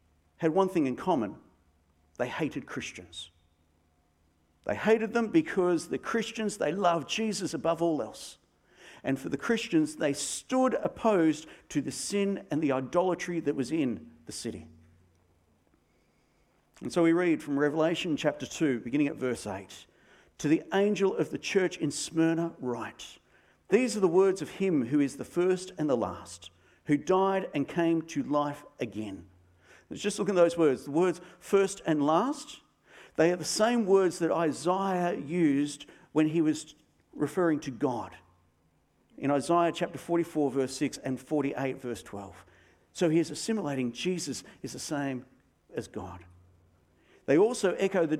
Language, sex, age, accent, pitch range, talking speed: English, male, 50-69, Australian, 120-175 Hz, 160 wpm